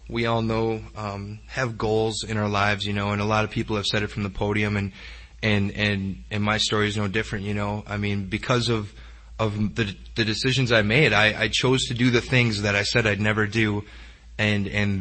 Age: 20-39